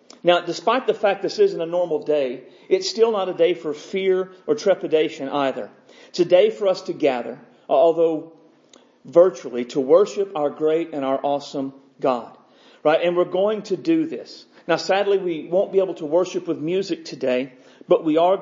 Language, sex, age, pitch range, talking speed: English, male, 40-59, 150-190 Hz, 185 wpm